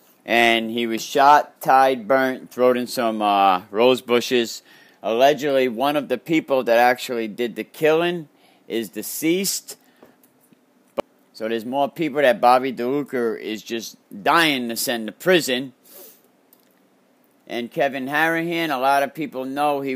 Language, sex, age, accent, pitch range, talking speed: English, male, 50-69, American, 115-145 Hz, 140 wpm